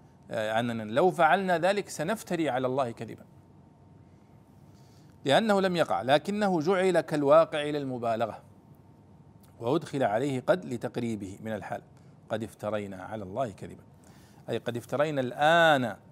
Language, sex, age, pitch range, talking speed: Arabic, male, 40-59, 115-165 Hz, 110 wpm